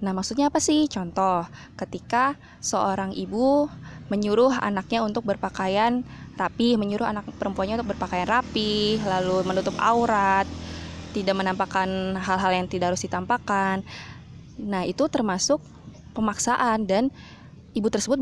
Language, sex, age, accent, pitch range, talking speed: Indonesian, female, 20-39, native, 190-235 Hz, 120 wpm